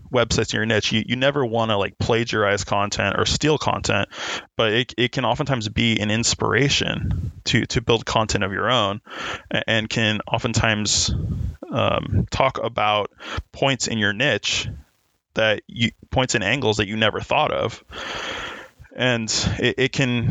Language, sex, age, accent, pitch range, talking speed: English, male, 20-39, American, 105-120 Hz, 160 wpm